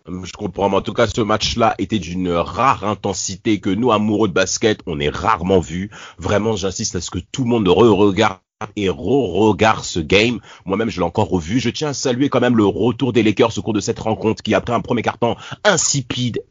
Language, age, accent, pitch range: French, 30-49, French, 105-160 Hz